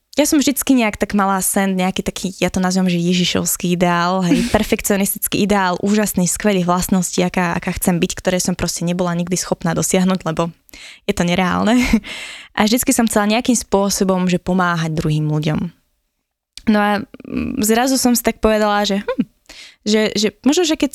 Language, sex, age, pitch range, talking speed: Slovak, female, 20-39, 185-220 Hz, 170 wpm